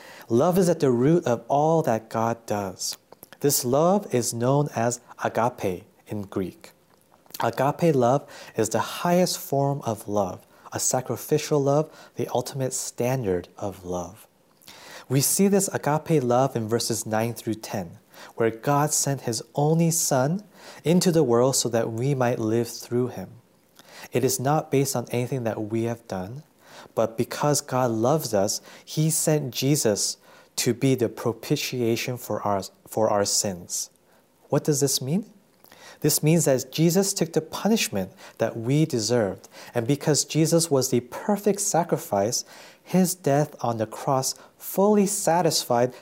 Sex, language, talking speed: male, English, 150 wpm